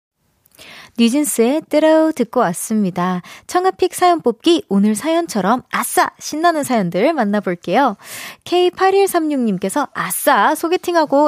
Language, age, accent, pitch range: Korean, 20-39, native, 205-310 Hz